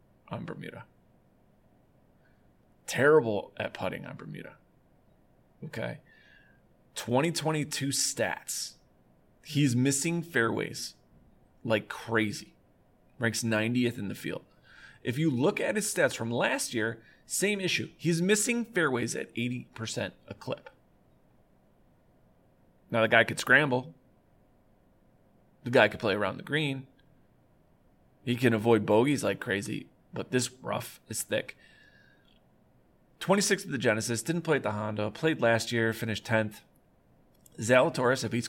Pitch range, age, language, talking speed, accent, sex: 110-140 Hz, 30-49, English, 125 wpm, American, male